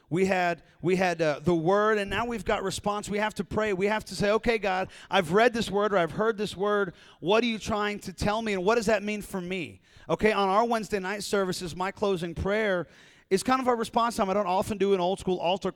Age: 40-59